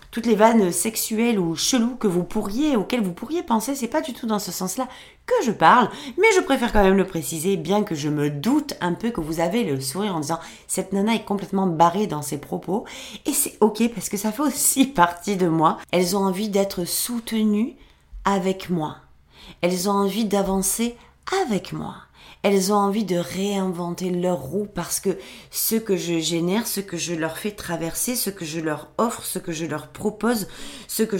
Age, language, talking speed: 30-49, French, 210 wpm